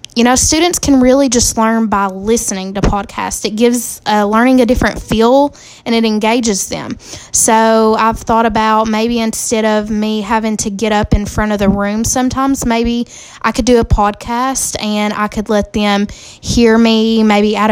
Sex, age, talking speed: female, 10-29, 185 wpm